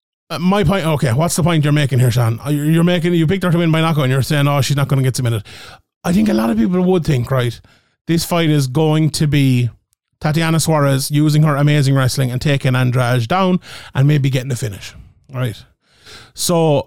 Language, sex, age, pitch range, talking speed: English, male, 30-49, 135-170 Hz, 225 wpm